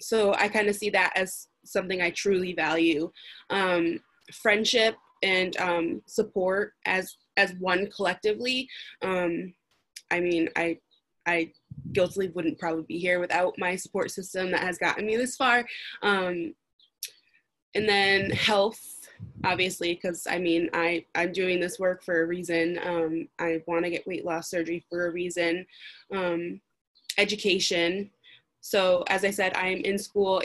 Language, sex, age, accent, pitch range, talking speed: English, female, 20-39, American, 170-195 Hz, 150 wpm